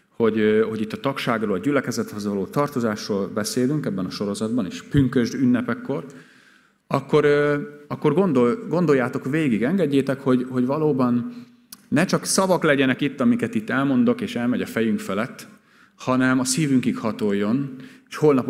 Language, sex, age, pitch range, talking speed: Hungarian, male, 30-49, 110-155 Hz, 145 wpm